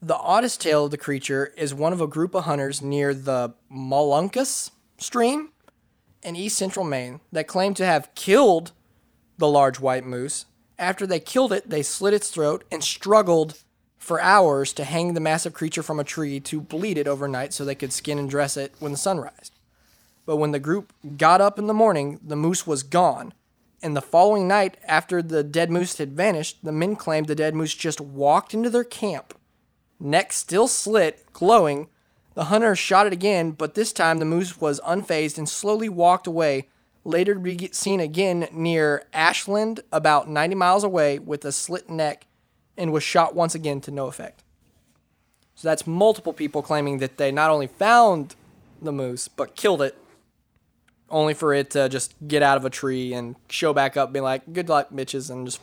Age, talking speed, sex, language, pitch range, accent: 20-39, 190 wpm, male, English, 140-180 Hz, American